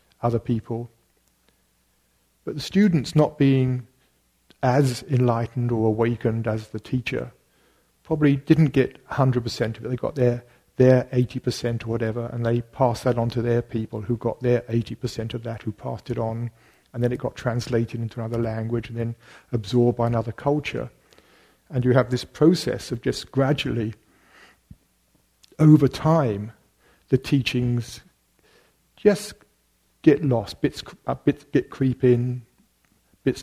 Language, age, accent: English, 50-69, British